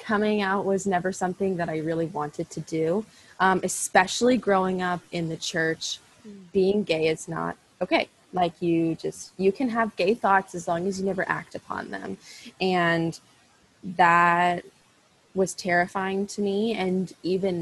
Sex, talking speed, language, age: female, 160 wpm, English, 20-39